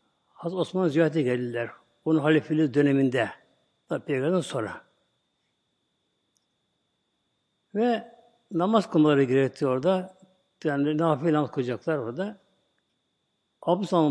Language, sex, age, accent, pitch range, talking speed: Turkish, male, 60-79, native, 135-185 Hz, 80 wpm